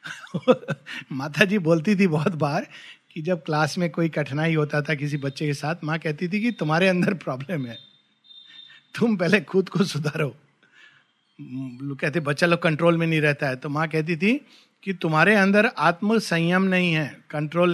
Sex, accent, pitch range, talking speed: male, native, 155-215 Hz, 170 wpm